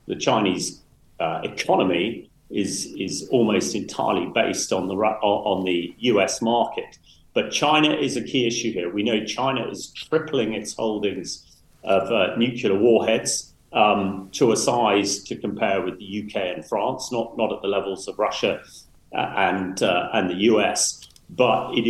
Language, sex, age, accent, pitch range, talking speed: English, male, 40-59, British, 95-110 Hz, 160 wpm